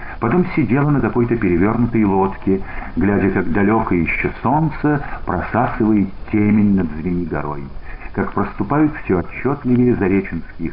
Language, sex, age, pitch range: Russian, male, 50-69, 90-125 Hz